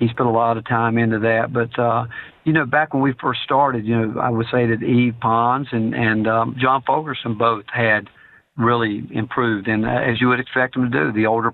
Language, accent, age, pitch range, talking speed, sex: English, American, 50-69, 115-125 Hz, 235 wpm, male